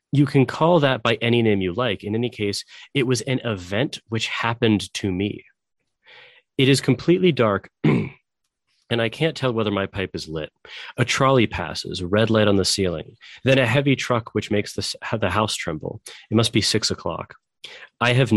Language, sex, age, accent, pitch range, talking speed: English, male, 30-49, American, 100-125 Hz, 190 wpm